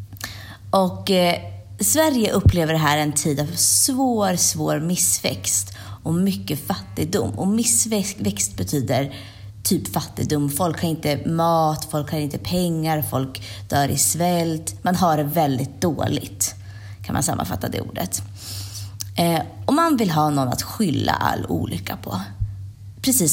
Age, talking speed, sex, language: 20-39, 140 wpm, female, Swedish